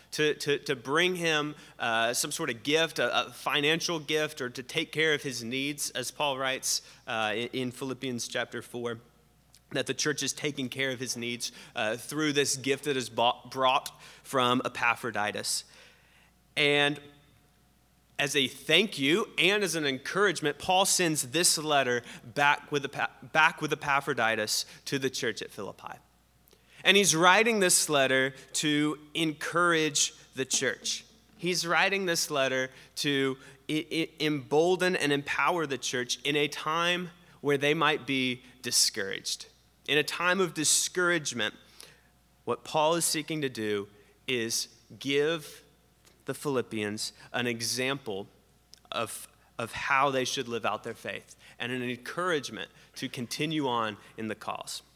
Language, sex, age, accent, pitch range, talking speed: English, male, 30-49, American, 120-155 Hz, 145 wpm